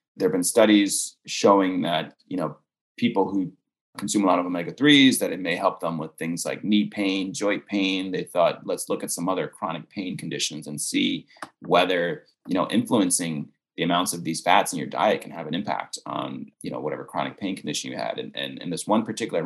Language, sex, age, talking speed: English, male, 30-49, 215 wpm